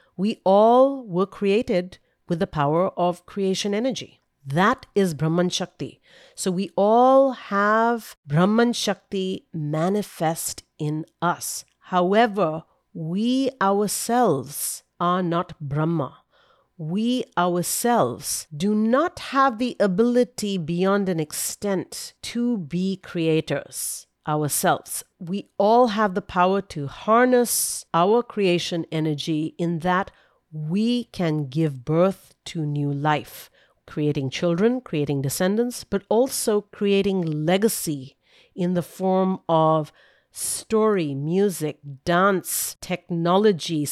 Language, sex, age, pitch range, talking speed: English, female, 50-69, 160-210 Hz, 105 wpm